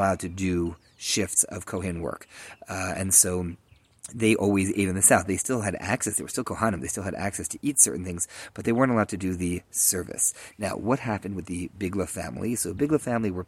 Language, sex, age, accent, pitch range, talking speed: English, male, 30-49, American, 90-105 Hz, 225 wpm